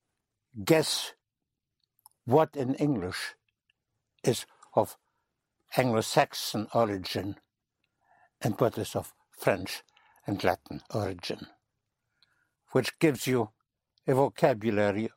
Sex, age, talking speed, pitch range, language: male, 60-79, 85 wpm, 100-120 Hz, English